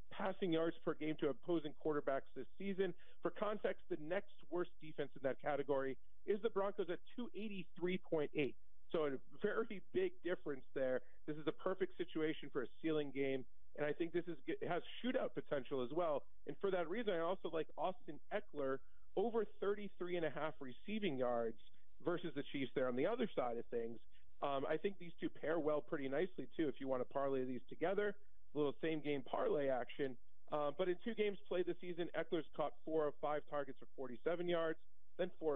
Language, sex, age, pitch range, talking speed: English, male, 40-59, 140-180 Hz, 195 wpm